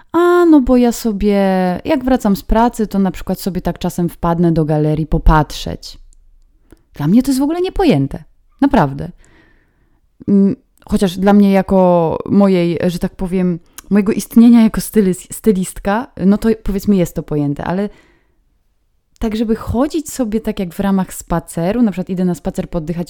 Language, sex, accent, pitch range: Polish, female, native, 175-230 Hz